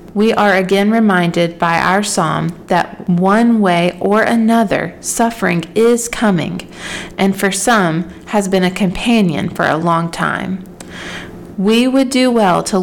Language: English